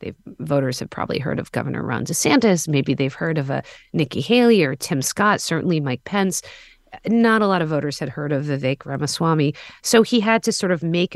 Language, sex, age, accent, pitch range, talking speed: English, female, 40-59, American, 155-210 Hz, 205 wpm